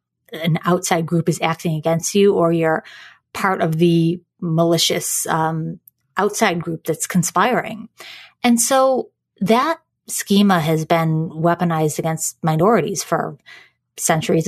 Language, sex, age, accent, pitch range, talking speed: English, female, 30-49, American, 160-205 Hz, 120 wpm